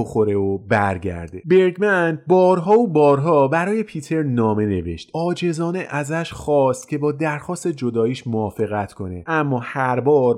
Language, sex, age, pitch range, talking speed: Persian, male, 30-49, 110-160 Hz, 135 wpm